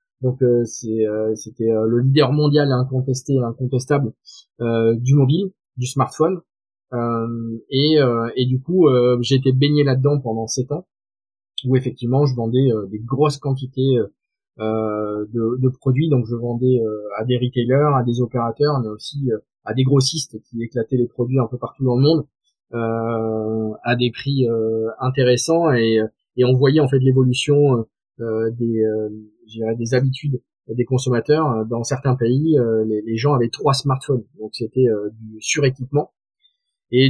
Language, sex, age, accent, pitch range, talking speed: French, male, 20-39, French, 115-135 Hz, 155 wpm